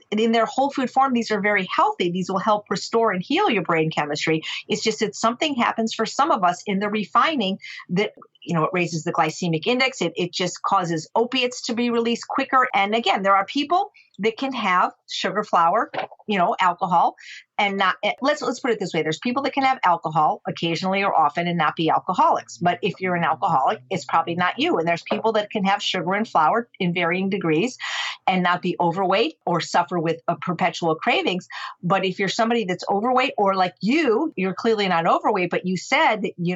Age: 50-69